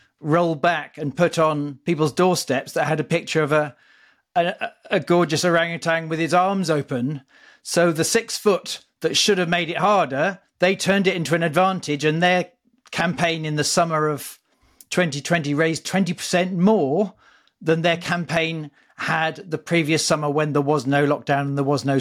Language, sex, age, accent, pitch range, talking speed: English, male, 40-59, British, 155-185 Hz, 175 wpm